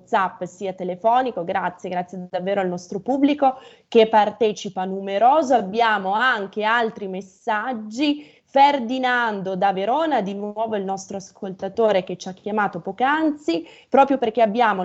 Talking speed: 125 wpm